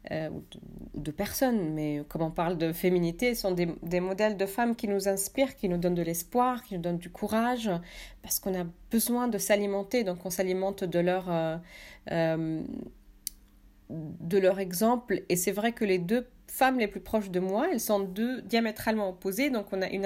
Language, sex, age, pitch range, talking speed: French, female, 30-49, 175-215 Hz, 190 wpm